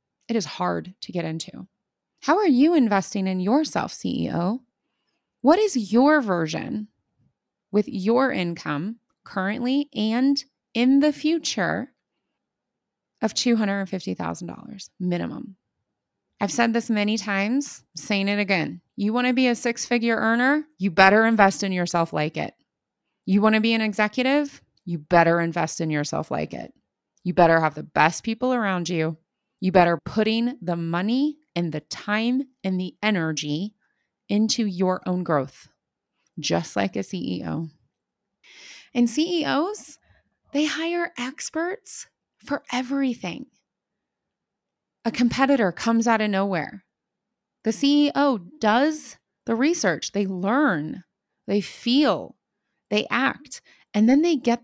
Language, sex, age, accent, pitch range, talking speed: English, female, 20-39, American, 180-260 Hz, 130 wpm